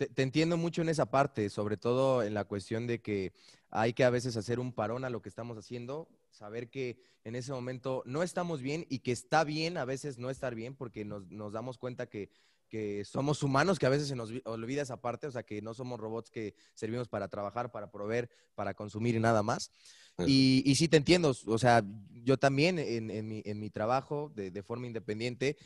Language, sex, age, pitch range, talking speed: Spanish, male, 20-39, 115-145 Hz, 220 wpm